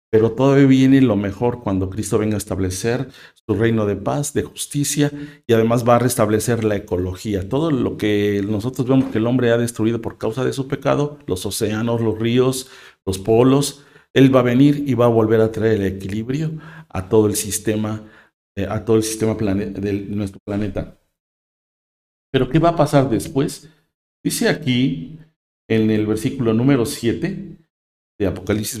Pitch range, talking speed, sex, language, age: 110-140 Hz, 170 wpm, male, Spanish, 50-69